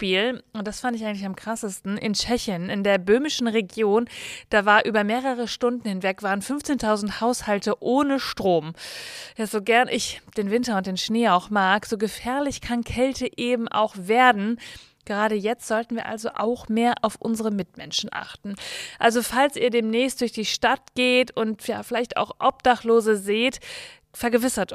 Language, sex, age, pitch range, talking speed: German, female, 30-49, 210-250 Hz, 160 wpm